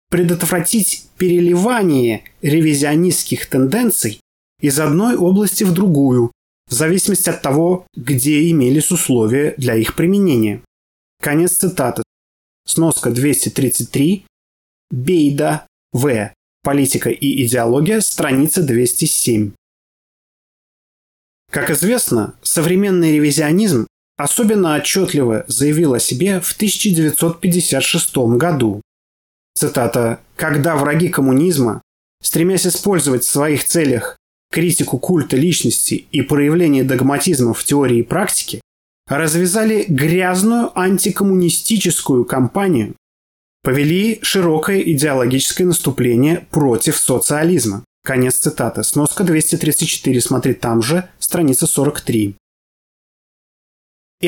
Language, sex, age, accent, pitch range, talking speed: Russian, male, 30-49, native, 125-180 Hz, 85 wpm